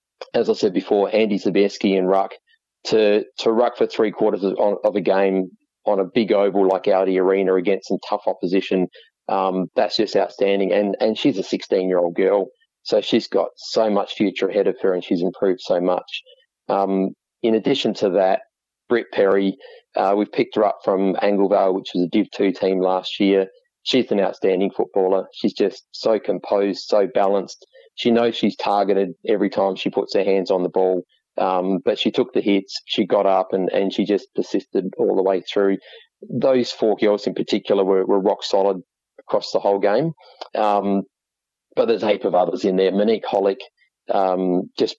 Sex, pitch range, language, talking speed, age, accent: male, 95-130 Hz, English, 190 wpm, 30-49, Australian